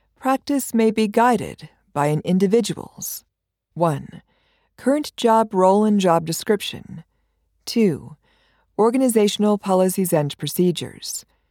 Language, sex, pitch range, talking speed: English, female, 170-210 Hz, 100 wpm